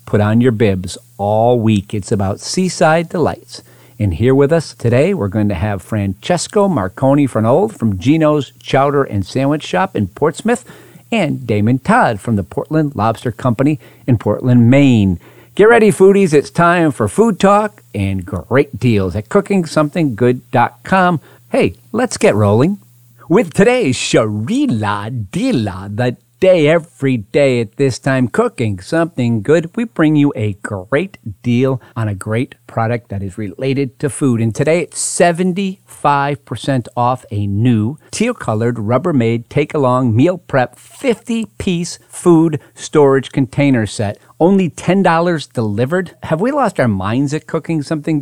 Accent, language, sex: American, English, male